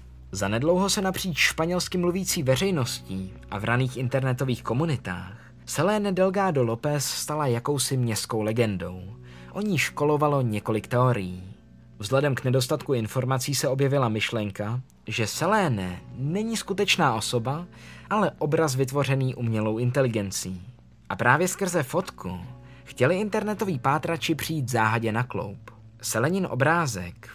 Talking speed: 120 wpm